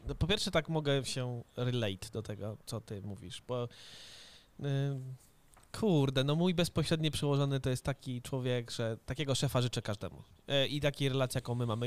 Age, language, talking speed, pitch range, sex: 20-39, Polish, 165 wpm, 120-145 Hz, male